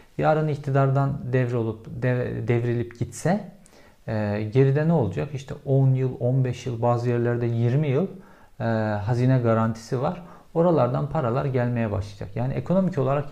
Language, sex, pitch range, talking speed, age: Turkish, male, 110-135 Hz, 140 wpm, 50-69